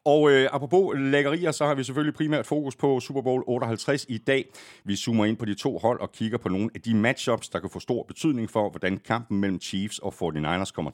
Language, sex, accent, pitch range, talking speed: Danish, male, native, 95-135 Hz, 235 wpm